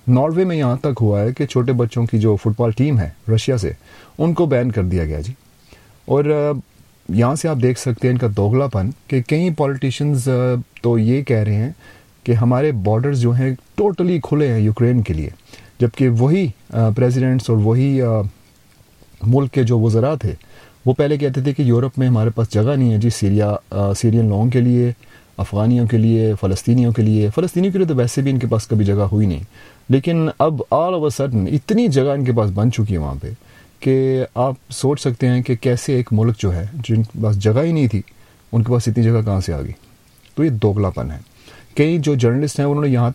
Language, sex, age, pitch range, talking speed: Urdu, male, 30-49, 110-135 Hz, 210 wpm